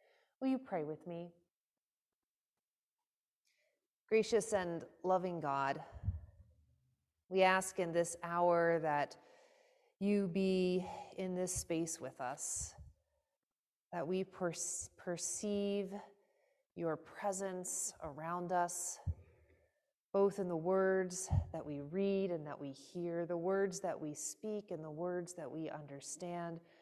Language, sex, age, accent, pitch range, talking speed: English, female, 30-49, American, 165-205 Hz, 115 wpm